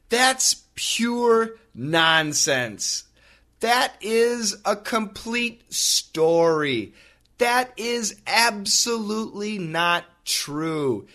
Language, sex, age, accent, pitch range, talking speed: English, male, 30-49, American, 120-190 Hz, 70 wpm